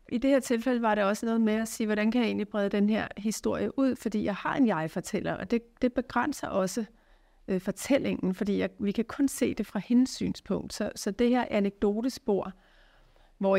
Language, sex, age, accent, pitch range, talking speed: Danish, female, 40-59, native, 185-225 Hz, 205 wpm